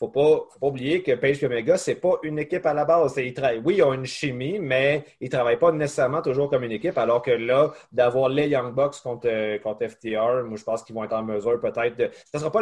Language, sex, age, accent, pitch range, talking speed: French, male, 30-49, Canadian, 120-165 Hz, 260 wpm